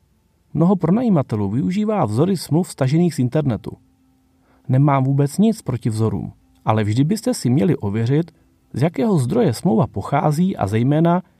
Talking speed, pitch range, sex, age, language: 135 wpm, 115-175 Hz, male, 30-49, Czech